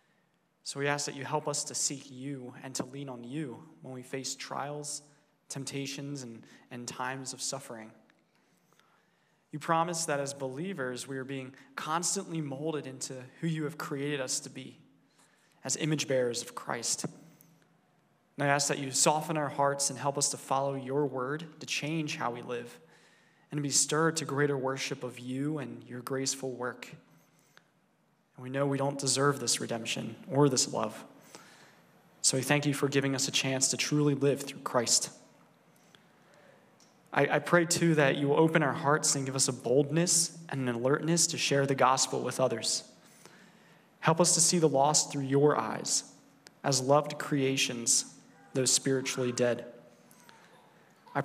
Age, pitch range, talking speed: 20-39, 130-150 Hz, 170 wpm